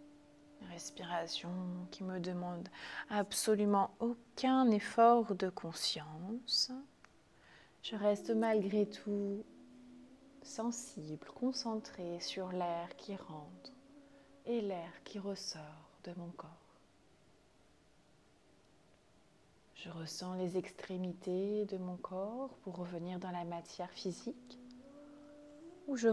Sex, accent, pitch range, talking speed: female, French, 175-250 Hz, 95 wpm